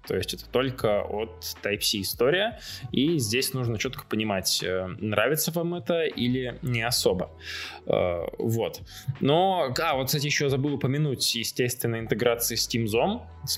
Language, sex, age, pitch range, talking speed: Russian, male, 20-39, 110-150 Hz, 135 wpm